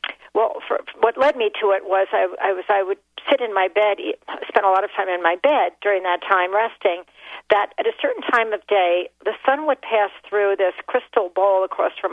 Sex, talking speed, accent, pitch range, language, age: female, 230 wpm, American, 190-260 Hz, English, 50-69